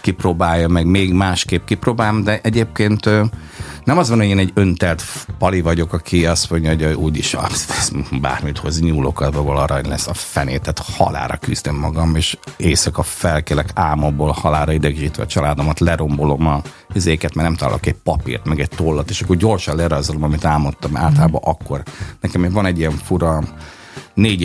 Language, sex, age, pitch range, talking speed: Hungarian, male, 50-69, 75-95 Hz, 160 wpm